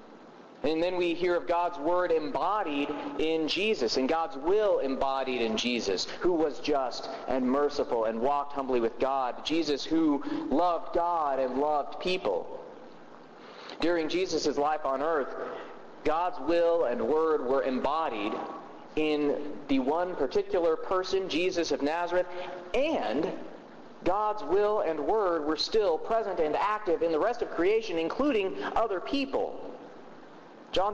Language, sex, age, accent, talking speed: English, male, 40-59, American, 140 wpm